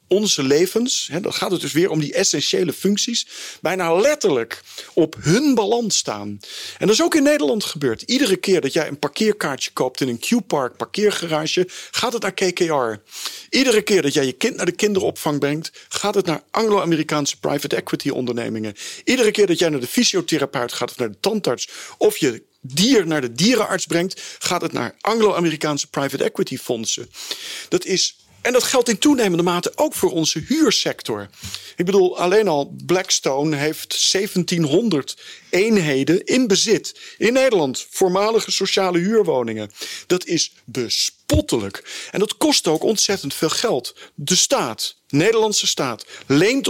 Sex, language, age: male, Dutch, 40-59